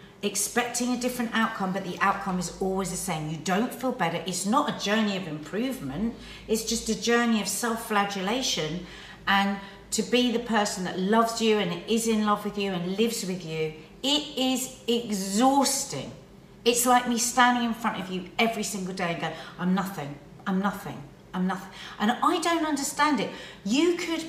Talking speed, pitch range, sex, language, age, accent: 185 wpm, 195-280 Hz, female, English, 40-59, British